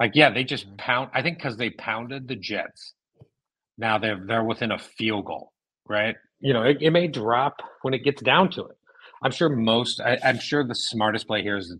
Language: English